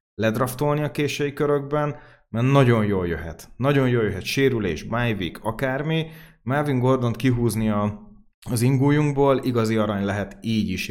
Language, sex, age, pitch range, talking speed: Hungarian, male, 30-49, 110-135 Hz, 130 wpm